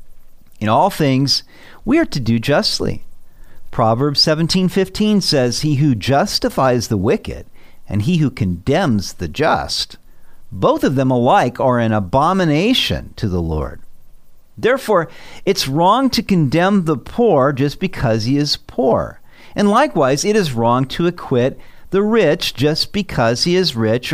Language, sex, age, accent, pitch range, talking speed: English, male, 50-69, American, 115-180 Hz, 145 wpm